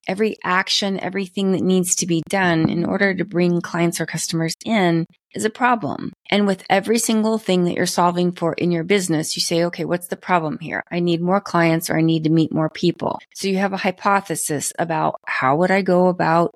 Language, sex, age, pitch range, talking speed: English, female, 30-49, 165-190 Hz, 215 wpm